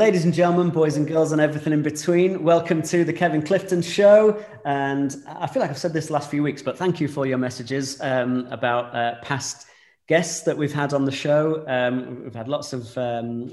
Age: 30-49